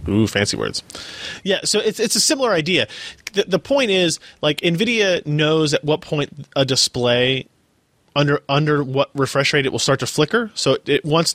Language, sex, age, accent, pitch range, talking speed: English, male, 30-49, American, 125-155 Hz, 190 wpm